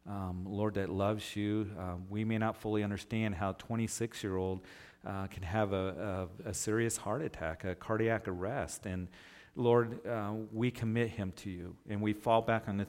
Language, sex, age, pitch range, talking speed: English, male, 50-69, 95-110 Hz, 185 wpm